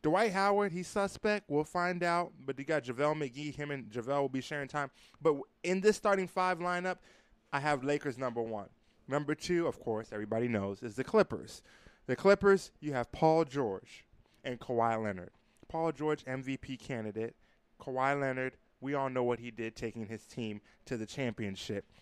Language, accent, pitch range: English, American, 115-165 Hz